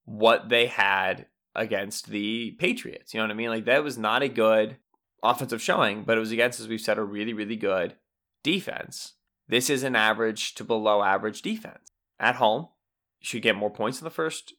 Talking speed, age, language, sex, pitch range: 200 wpm, 20-39, English, male, 110-140 Hz